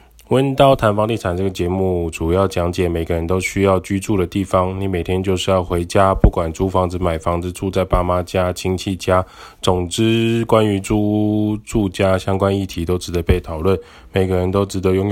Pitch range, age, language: 90-100 Hz, 10-29, Chinese